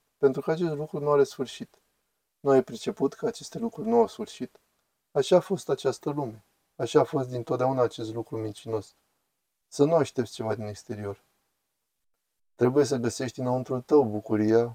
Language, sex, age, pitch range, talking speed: Romanian, male, 20-39, 115-140 Hz, 165 wpm